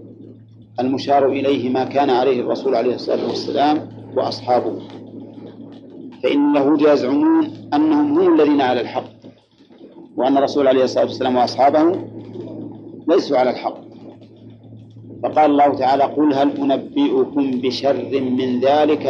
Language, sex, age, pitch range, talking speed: Arabic, male, 50-69, 115-150 Hz, 110 wpm